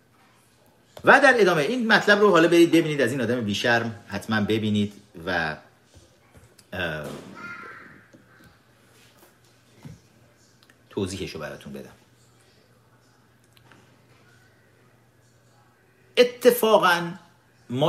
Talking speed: 75 wpm